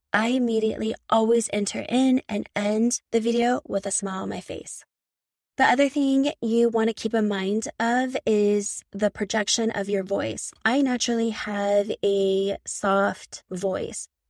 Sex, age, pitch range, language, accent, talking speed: female, 20-39, 200-235 Hz, English, American, 155 wpm